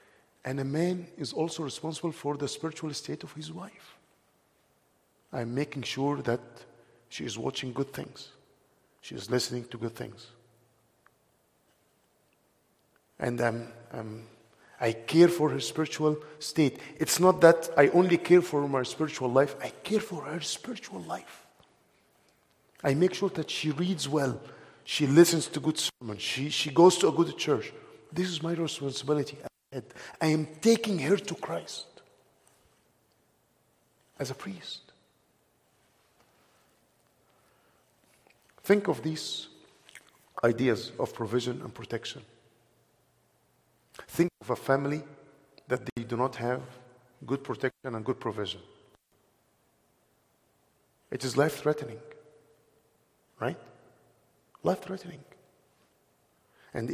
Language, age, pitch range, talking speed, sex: English, 50-69, 125-160 Hz, 115 wpm, male